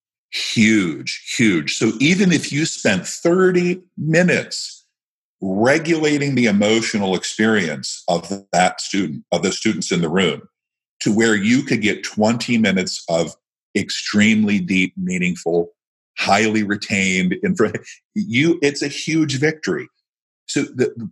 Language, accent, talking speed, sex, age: English, American, 120 wpm, male, 50-69